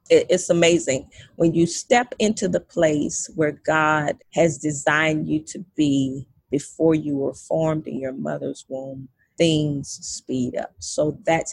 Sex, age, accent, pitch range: female, 30-49, American, 140-170 Hz